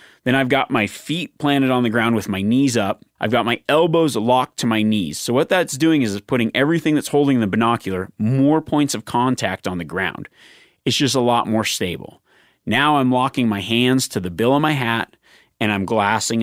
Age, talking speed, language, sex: 30-49, 215 wpm, English, male